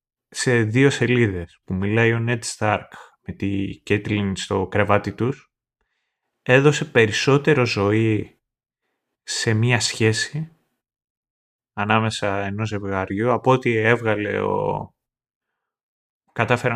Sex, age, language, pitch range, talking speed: male, 30-49, Greek, 100-135 Hz, 100 wpm